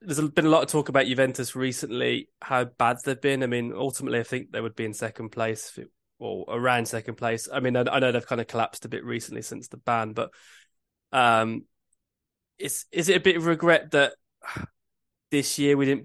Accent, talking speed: British, 215 wpm